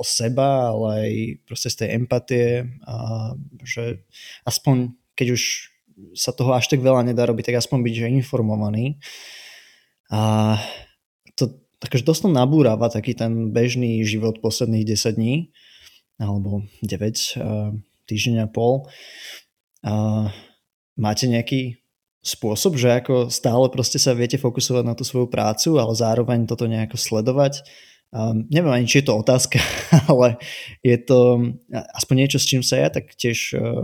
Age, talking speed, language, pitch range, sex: 20-39, 140 wpm, Slovak, 110-130 Hz, male